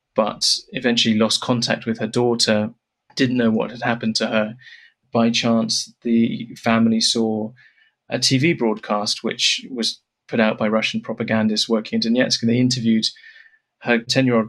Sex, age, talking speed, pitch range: male, 20-39, 155 wpm, 110-130 Hz